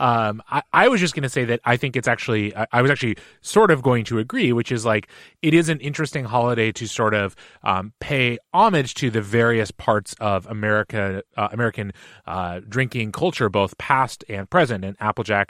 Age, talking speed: 30-49, 205 wpm